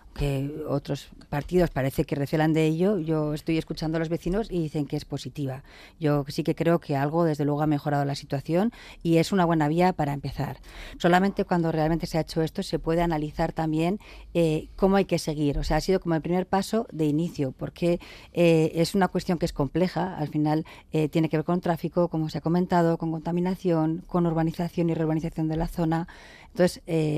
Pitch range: 150-175 Hz